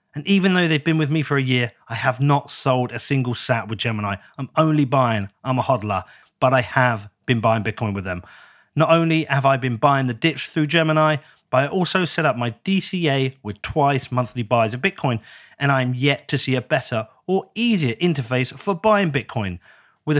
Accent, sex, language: British, male, English